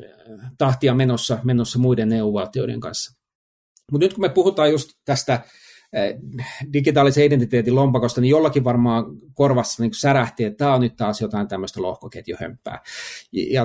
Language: Finnish